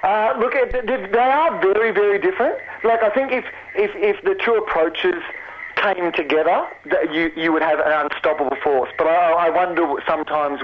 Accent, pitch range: Australian, 145-195 Hz